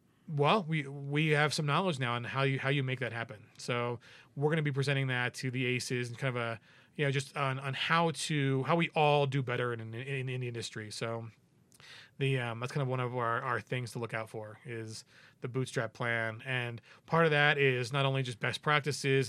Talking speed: 230 wpm